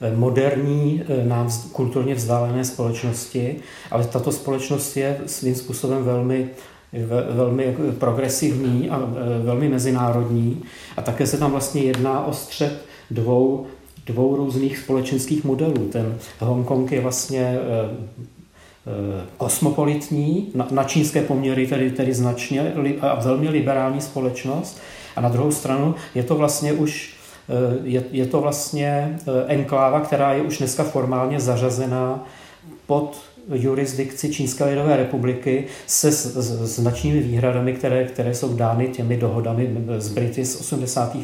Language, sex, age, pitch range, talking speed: Czech, male, 40-59, 125-145 Hz, 120 wpm